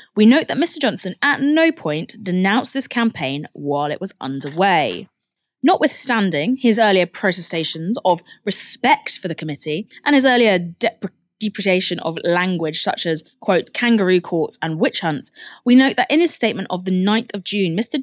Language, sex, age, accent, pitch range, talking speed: English, female, 20-39, British, 170-250 Hz, 165 wpm